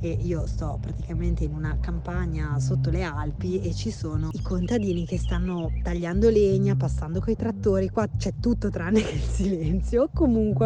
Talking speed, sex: 160 wpm, female